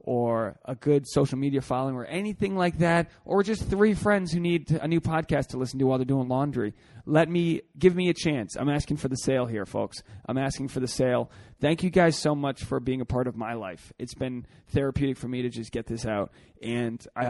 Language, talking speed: English, 230 wpm